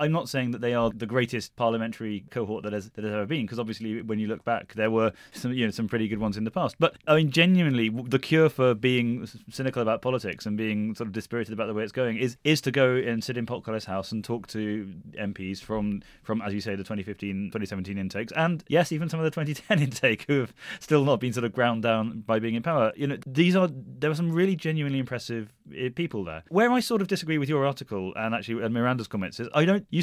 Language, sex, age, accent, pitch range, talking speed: English, male, 20-39, British, 105-140 Hz, 255 wpm